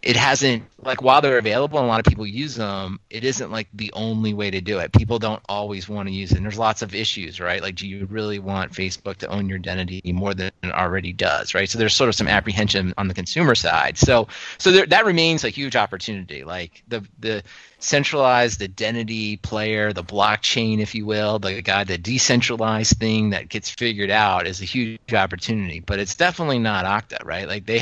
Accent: American